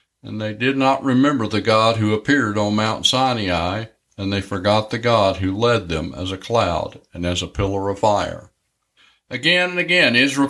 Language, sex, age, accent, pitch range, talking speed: English, male, 50-69, American, 105-135 Hz, 190 wpm